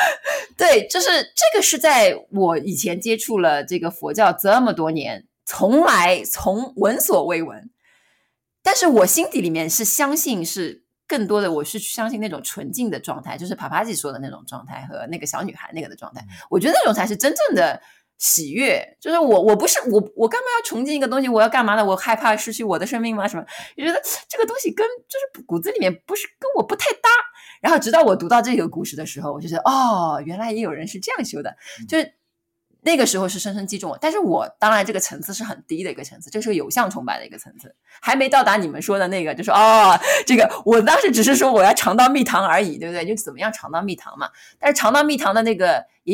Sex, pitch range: female, 185-280 Hz